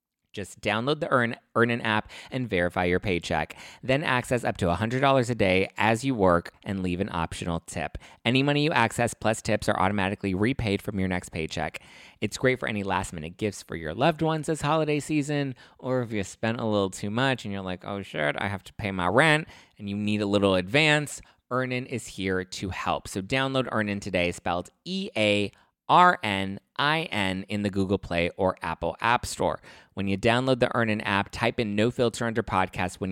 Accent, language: American, English